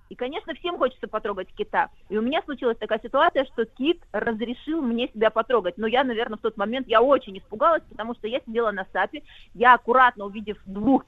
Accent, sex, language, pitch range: native, female, Russian, 215-275 Hz